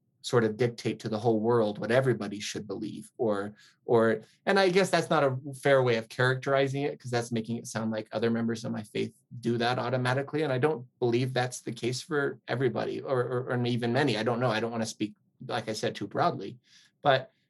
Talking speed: 225 wpm